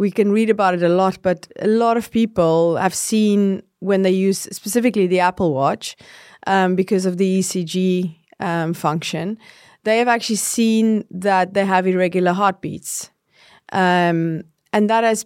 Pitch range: 180-215 Hz